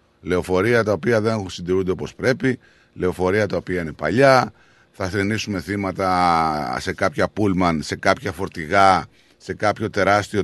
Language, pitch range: Greek, 90-120 Hz